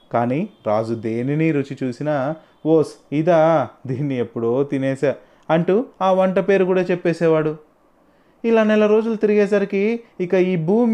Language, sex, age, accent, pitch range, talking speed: Telugu, male, 30-49, native, 135-180 Hz, 125 wpm